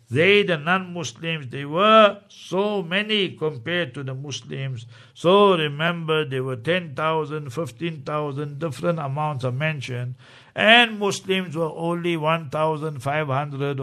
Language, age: English, 60-79